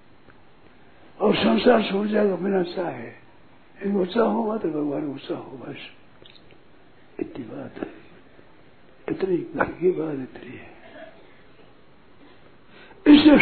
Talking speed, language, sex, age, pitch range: 100 wpm, Hindi, male, 60-79, 170-245 Hz